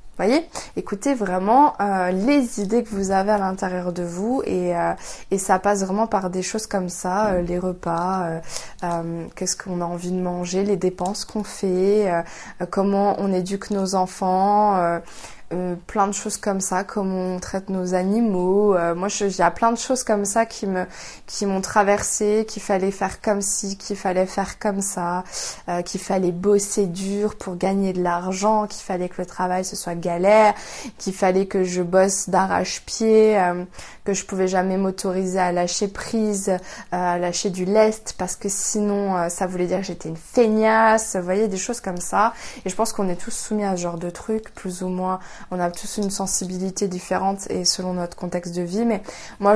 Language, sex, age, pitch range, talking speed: French, female, 20-39, 180-205 Hz, 200 wpm